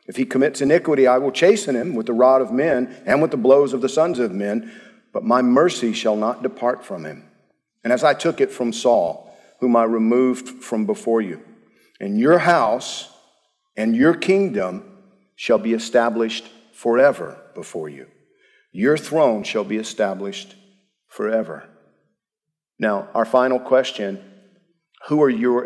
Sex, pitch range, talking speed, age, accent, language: male, 115-170 Hz, 160 wpm, 50-69, American, English